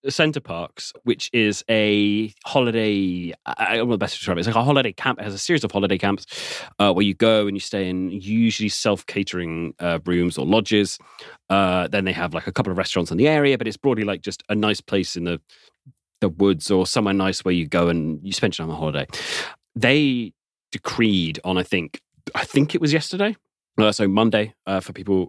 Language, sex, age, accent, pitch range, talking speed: English, male, 30-49, British, 95-120 Hz, 220 wpm